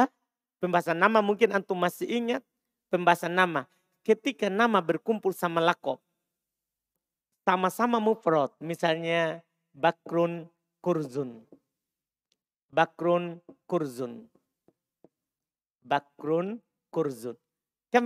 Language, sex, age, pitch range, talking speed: Indonesian, male, 50-69, 170-235 Hz, 75 wpm